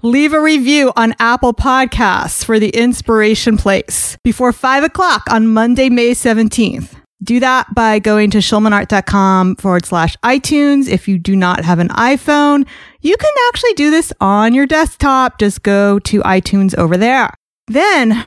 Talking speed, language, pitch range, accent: 160 wpm, English, 200-265 Hz, American